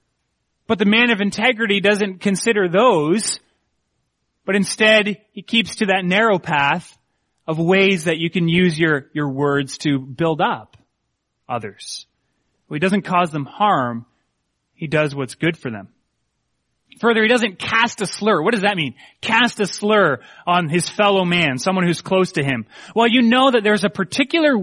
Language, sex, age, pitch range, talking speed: English, male, 30-49, 165-215 Hz, 170 wpm